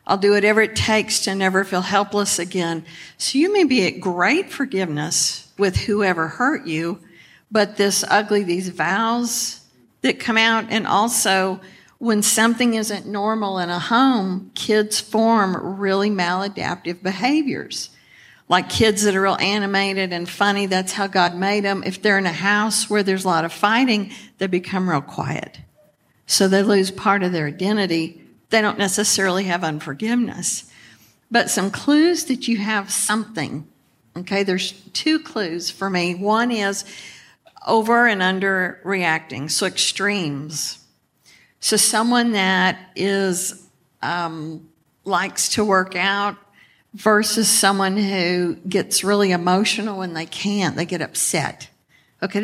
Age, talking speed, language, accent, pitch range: 50-69, 145 wpm, English, American, 180-215 Hz